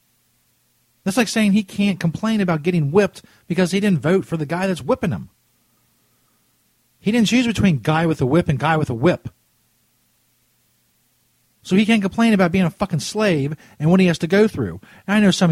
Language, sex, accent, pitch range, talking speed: English, male, American, 125-190 Hz, 200 wpm